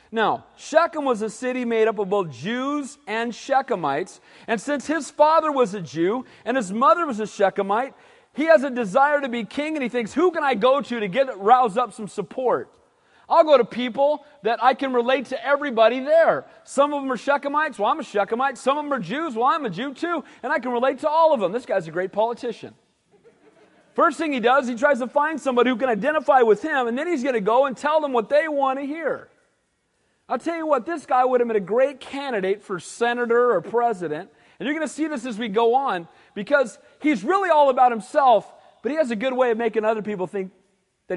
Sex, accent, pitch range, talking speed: male, American, 225-290 Hz, 235 wpm